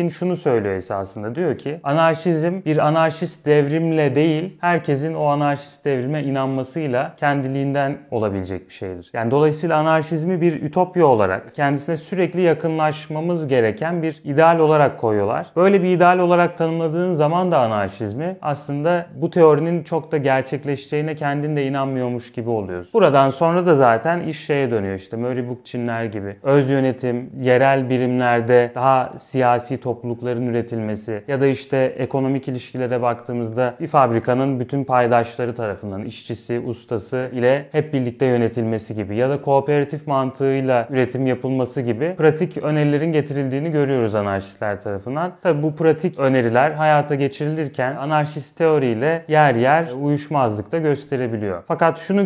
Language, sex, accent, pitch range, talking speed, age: Turkish, male, native, 120-155 Hz, 135 wpm, 30-49